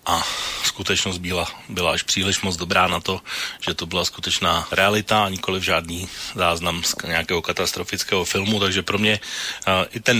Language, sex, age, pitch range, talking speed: Slovak, male, 30-49, 85-100 Hz, 170 wpm